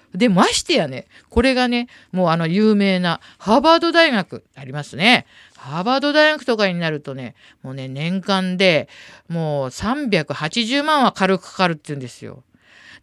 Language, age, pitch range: Japanese, 50-69, 145-220 Hz